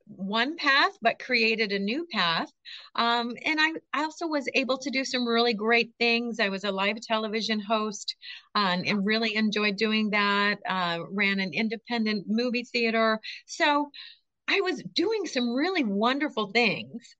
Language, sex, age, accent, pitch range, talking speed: English, female, 40-59, American, 210-290 Hz, 165 wpm